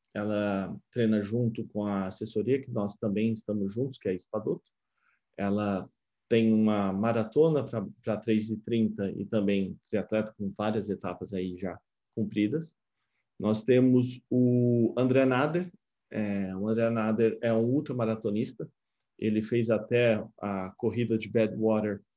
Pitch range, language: 105-125 Hz, Portuguese